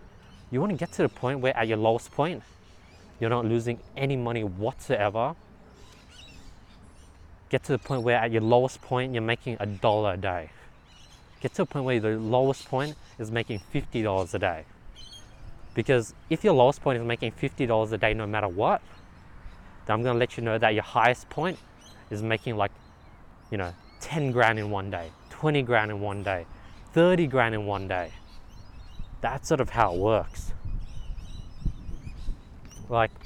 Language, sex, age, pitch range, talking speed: English, male, 20-39, 100-125 Hz, 175 wpm